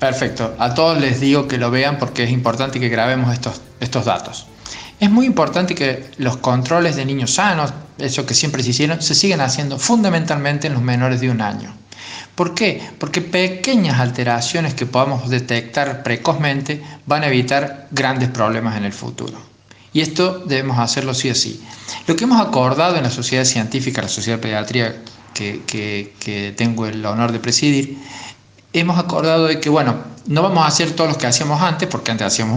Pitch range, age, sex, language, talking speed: 120-160 Hz, 40-59, male, Spanish, 185 wpm